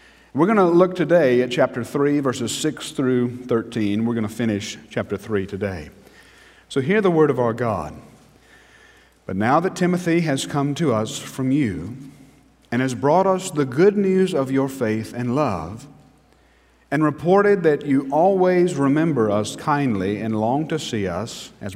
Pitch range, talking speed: 110-150 Hz, 165 wpm